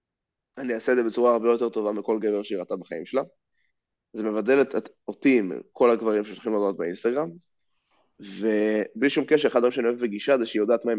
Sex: male